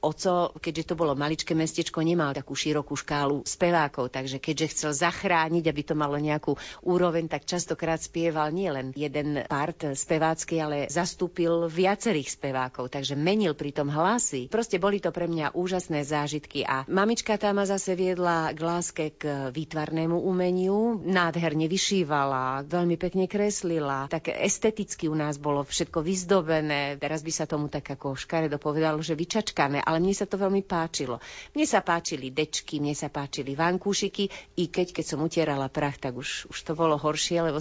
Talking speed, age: 160 wpm, 40-59